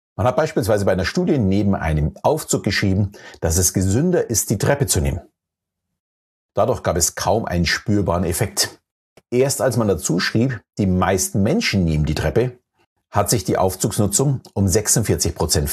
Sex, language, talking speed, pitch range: male, German, 160 wpm, 90-115 Hz